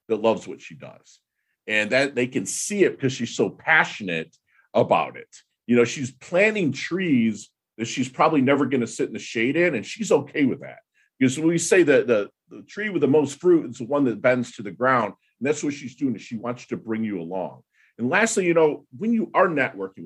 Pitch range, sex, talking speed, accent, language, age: 110-150 Hz, male, 235 wpm, American, English, 50-69